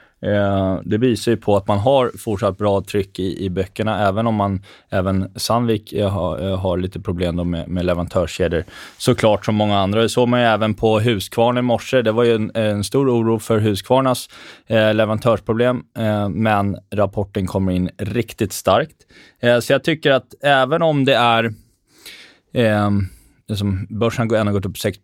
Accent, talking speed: native, 175 wpm